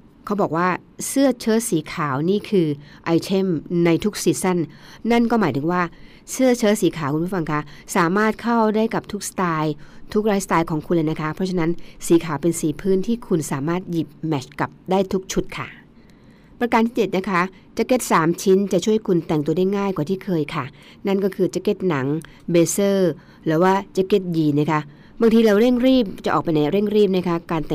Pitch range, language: 155-200 Hz, Thai